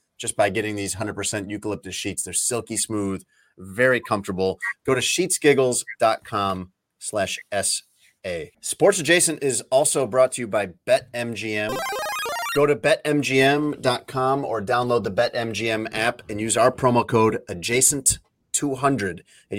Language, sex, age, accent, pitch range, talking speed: English, male, 30-49, American, 105-140 Hz, 125 wpm